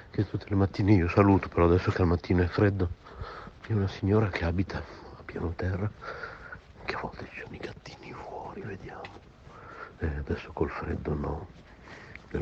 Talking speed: 175 wpm